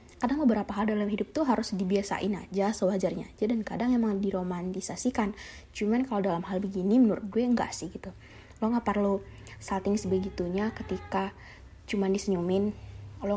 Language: Indonesian